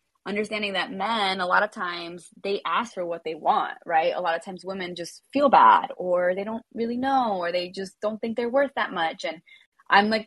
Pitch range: 170-205 Hz